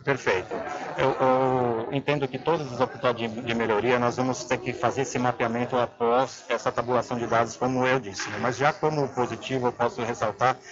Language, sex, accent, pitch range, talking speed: Portuguese, male, Brazilian, 125-145 Hz, 190 wpm